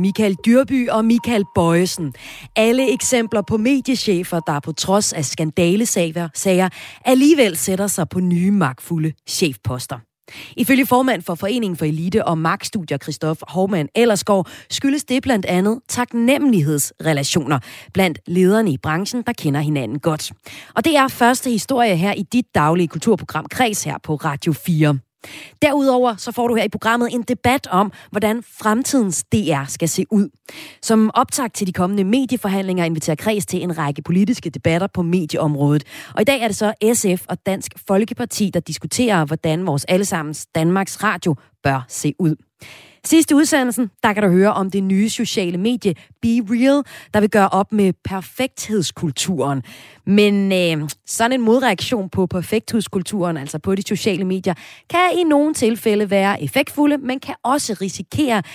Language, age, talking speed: Danish, 30-49, 155 wpm